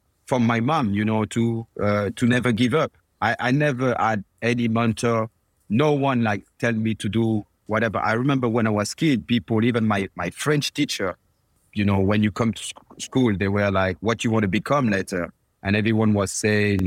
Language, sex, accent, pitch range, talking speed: English, male, French, 105-125 Hz, 210 wpm